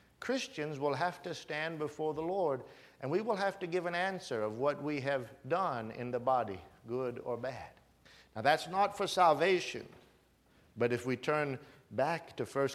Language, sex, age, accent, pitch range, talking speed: English, male, 50-69, American, 125-160 Hz, 185 wpm